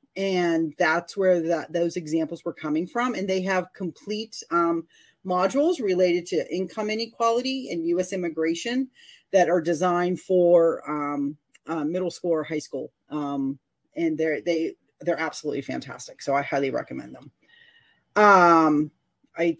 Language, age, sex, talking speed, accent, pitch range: English, 40-59, female, 145 wpm, American, 170-225 Hz